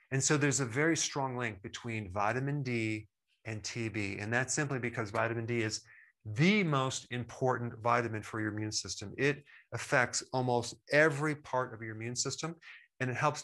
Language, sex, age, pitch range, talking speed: English, male, 40-59, 110-135 Hz, 175 wpm